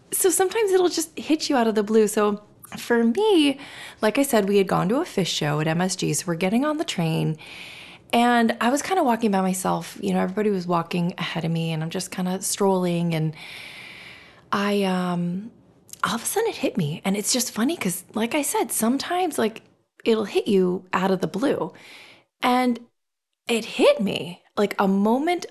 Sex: female